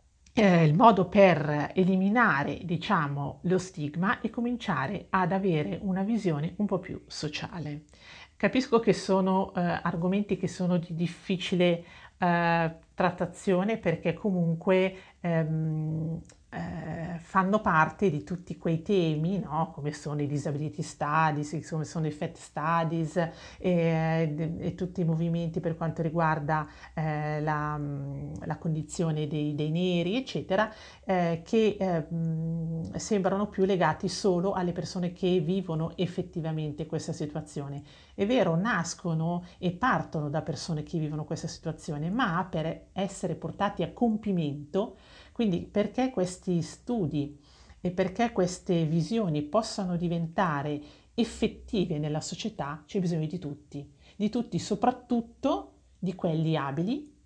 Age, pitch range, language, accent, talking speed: 40-59, 155-190 Hz, Italian, native, 125 wpm